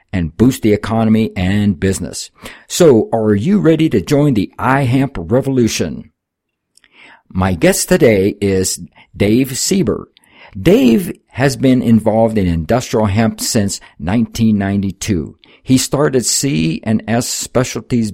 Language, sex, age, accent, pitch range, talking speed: English, male, 60-79, American, 100-125 Hz, 110 wpm